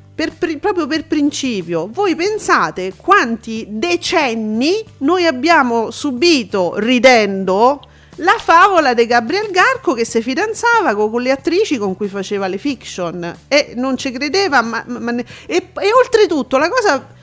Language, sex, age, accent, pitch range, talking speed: Italian, female, 40-59, native, 215-325 Hz, 130 wpm